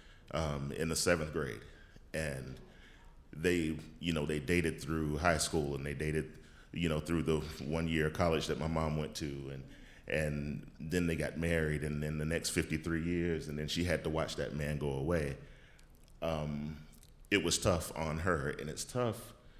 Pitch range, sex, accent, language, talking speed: 75-85 Hz, male, American, English, 190 wpm